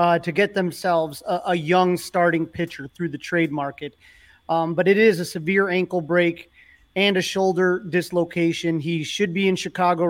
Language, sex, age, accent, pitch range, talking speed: English, male, 30-49, American, 170-200 Hz, 180 wpm